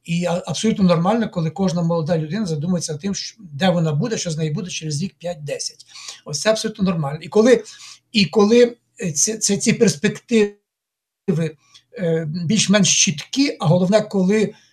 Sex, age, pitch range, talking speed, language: male, 60-79, 160-215 Hz, 145 wpm, Ukrainian